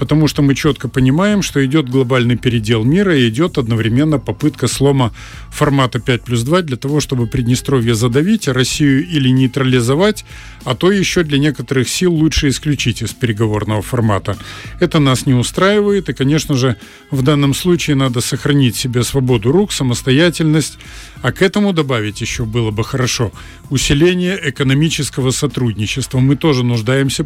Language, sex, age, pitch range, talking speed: Russian, male, 40-59, 125-155 Hz, 150 wpm